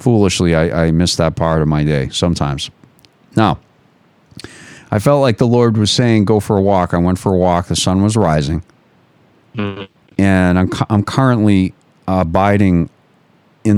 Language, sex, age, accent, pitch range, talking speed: English, male, 40-59, American, 90-105 Hz, 170 wpm